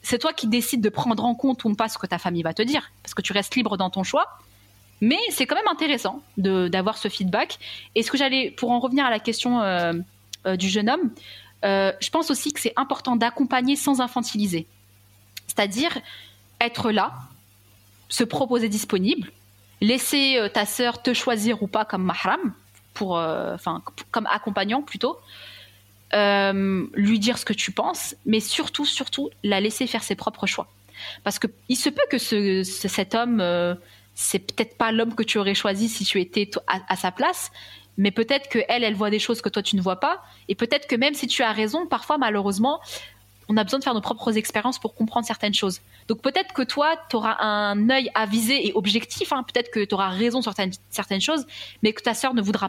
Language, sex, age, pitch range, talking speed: French, female, 20-39, 190-245 Hz, 210 wpm